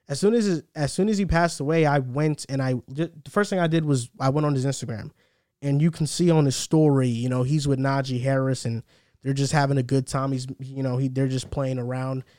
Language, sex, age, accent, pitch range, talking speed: English, male, 20-39, American, 135-160 Hz, 245 wpm